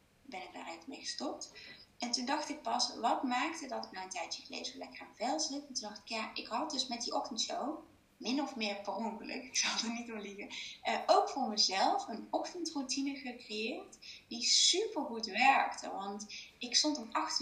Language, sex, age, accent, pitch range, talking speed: Dutch, female, 20-39, Dutch, 210-285 Hz, 205 wpm